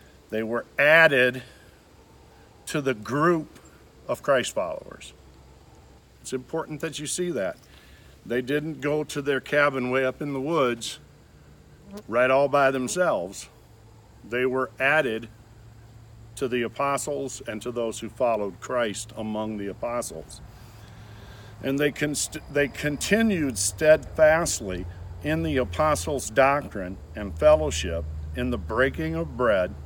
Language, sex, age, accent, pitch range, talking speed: English, male, 50-69, American, 100-140 Hz, 125 wpm